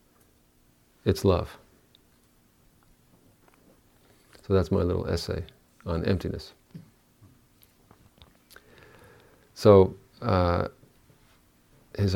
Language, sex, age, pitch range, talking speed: English, male, 50-69, 90-105 Hz, 60 wpm